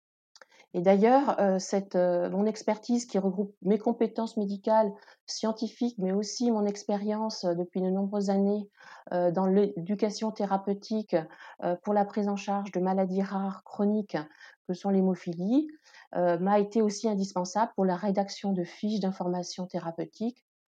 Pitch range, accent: 190-225 Hz, French